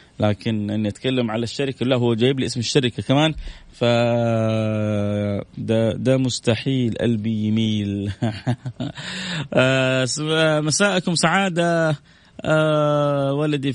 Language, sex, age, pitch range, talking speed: Arabic, male, 20-39, 115-155 Hz, 90 wpm